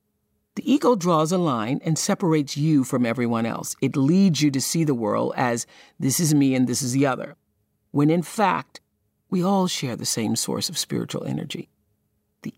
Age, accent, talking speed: 50-69, American, 190 wpm